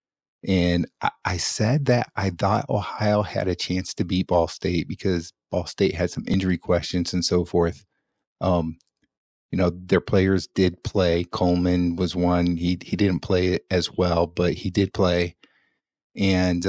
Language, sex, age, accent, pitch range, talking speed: English, male, 30-49, American, 85-95 Hz, 165 wpm